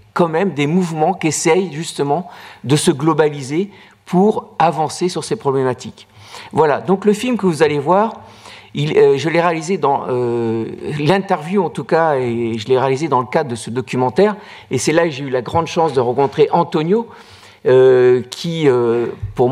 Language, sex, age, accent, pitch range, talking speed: French, male, 50-69, French, 140-190 Hz, 185 wpm